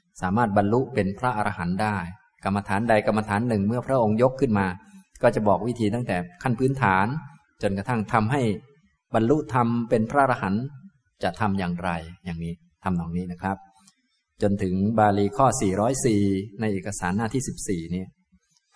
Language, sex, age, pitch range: Thai, male, 20-39, 95-120 Hz